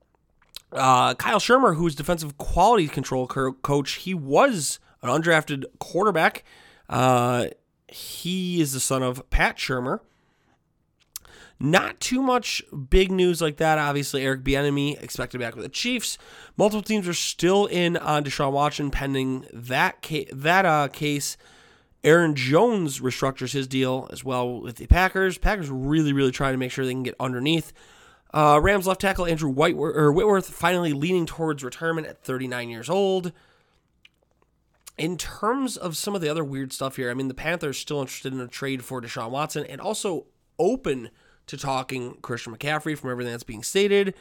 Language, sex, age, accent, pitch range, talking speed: English, male, 30-49, American, 130-175 Hz, 170 wpm